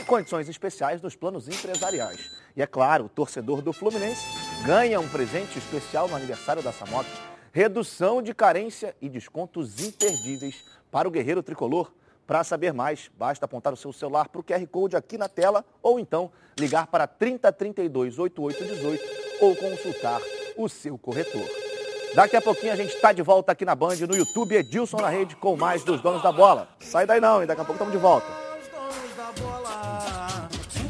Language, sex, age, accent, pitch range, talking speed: Portuguese, male, 30-49, Brazilian, 150-220 Hz, 170 wpm